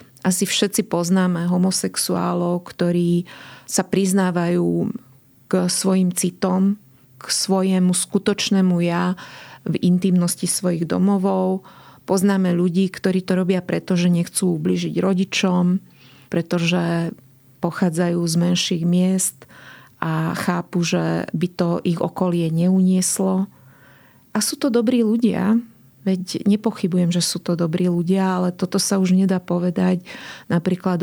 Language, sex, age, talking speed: Slovak, female, 30-49, 115 wpm